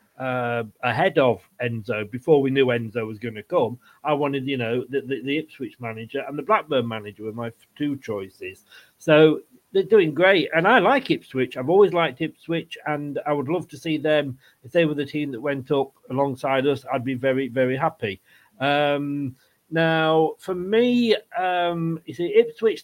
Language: English